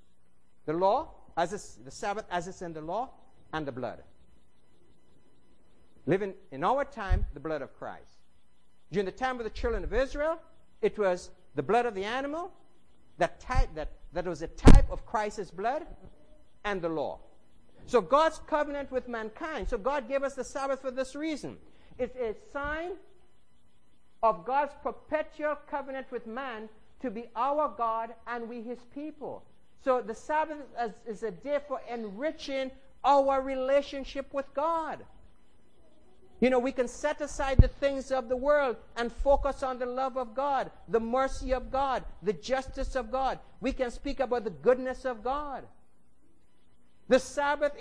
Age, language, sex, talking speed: 60-79, English, male, 160 wpm